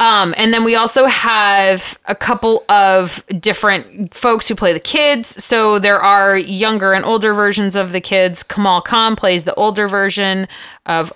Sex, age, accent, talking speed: female, 20-39, American, 170 wpm